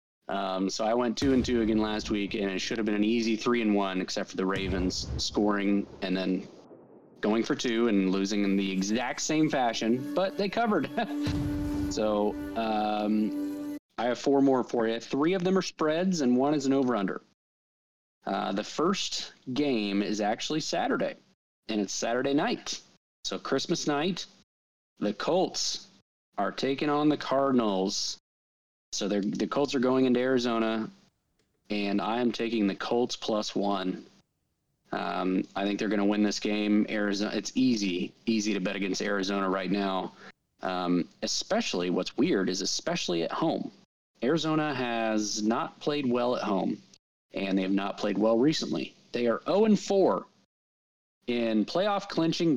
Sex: male